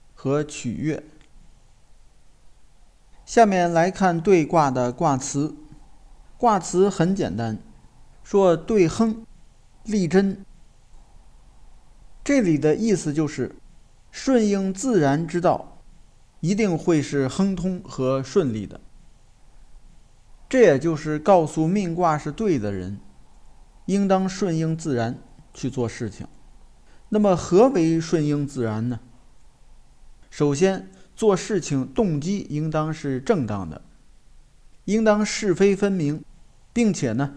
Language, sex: Chinese, male